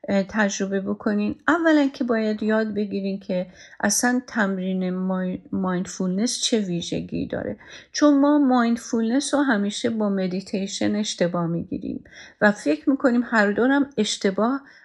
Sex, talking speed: female, 115 wpm